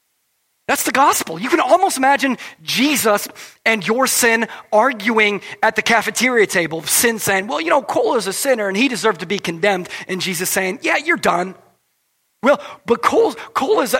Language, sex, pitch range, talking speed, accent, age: English, male, 190-265 Hz, 170 wpm, American, 30-49